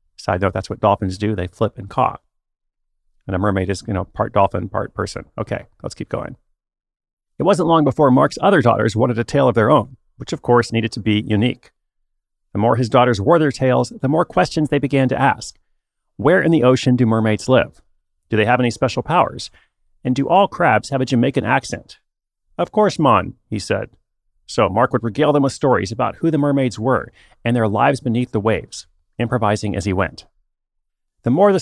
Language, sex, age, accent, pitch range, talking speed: English, male, 40-59, American, 110-140 Hz, 205 wpm